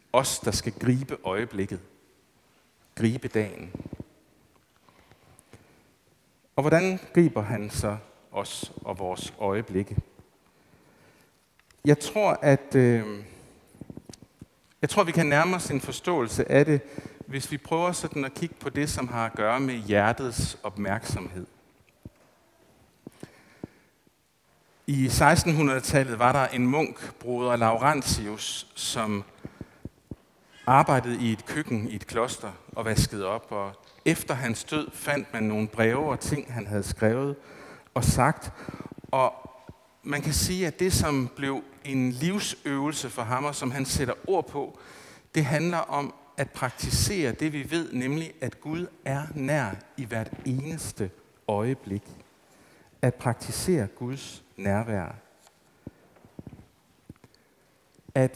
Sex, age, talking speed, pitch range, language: male, 60-79, 120 wpm, 110-145 Hz, Danish